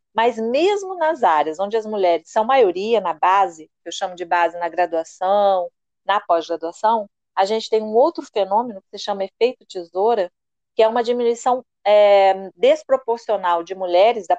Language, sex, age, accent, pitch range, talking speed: Portuguese, female, 30-49, Brazilian, 190-235 Hz, 165 wpm